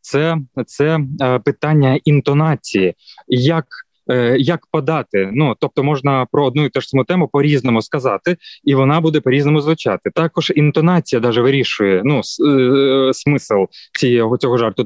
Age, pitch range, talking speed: 20-39, 130-160 Hz, 125 wpm